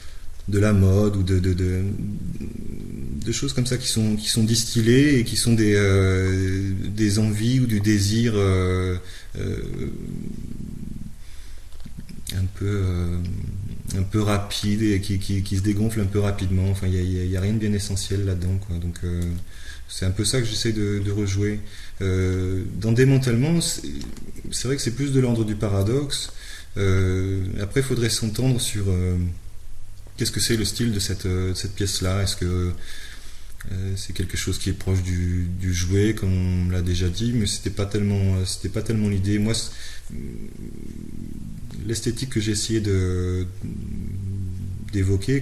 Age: 20-39